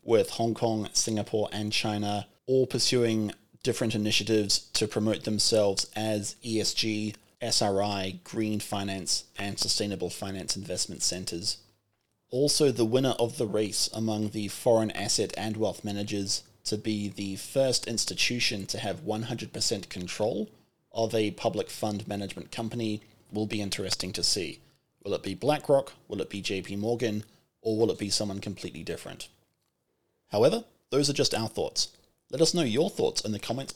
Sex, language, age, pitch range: male, English, 20-39, 100-120 Hz